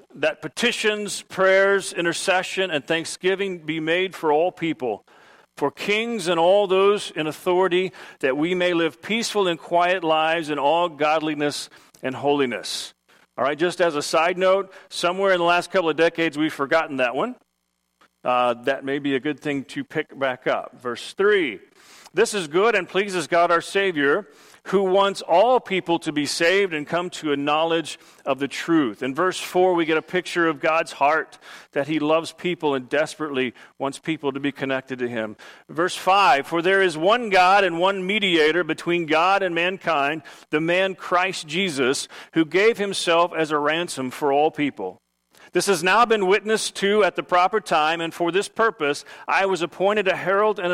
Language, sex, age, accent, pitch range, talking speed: English, male, 40-59, American, 150-190 Hz, 185 wpm